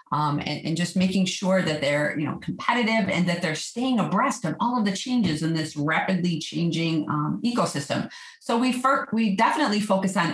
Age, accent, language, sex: 40-59, American, English, female